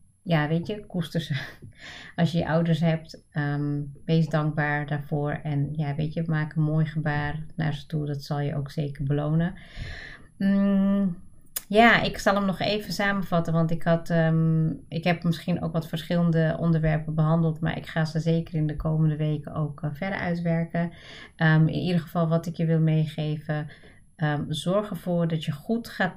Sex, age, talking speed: female, 30-49, 185 wpm